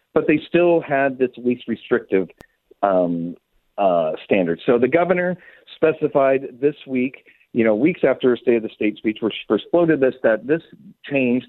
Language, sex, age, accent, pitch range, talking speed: English, male, 40-59, American, 105-145 Hz, 180 wpm